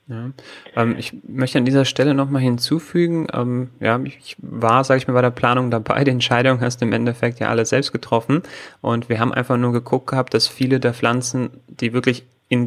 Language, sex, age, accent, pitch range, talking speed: German, male, 30-49, German, 115-130 Hz, 210 wpm